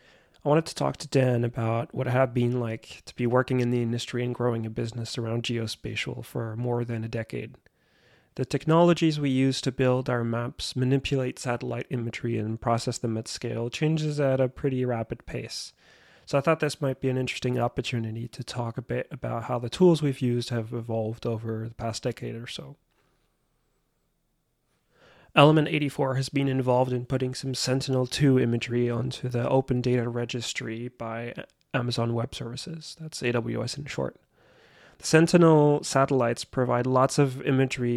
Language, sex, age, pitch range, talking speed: English, male, 30-49, 120-135 Hz, 170 wpm